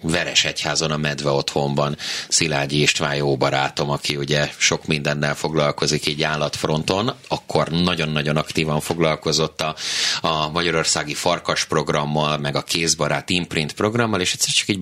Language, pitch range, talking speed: Hungarian, 75-90 Hz, 140 wpm